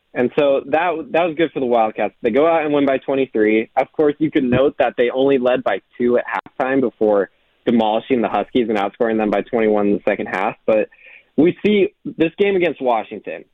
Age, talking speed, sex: 20-39, 215 wpm, male